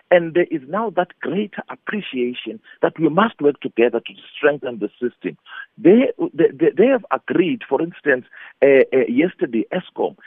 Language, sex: English, male